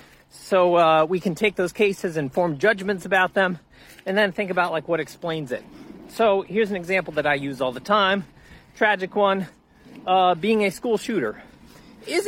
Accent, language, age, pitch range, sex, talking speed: American, English, 40-59, 150-210 Hz, male, 185 wpm